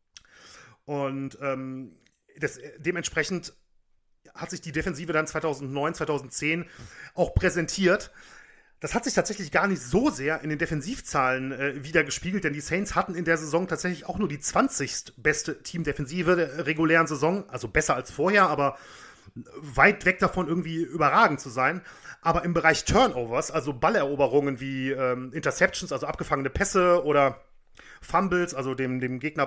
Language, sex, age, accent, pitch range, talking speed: German, male, 30-49, German, 140-180 Hz, 150 wpm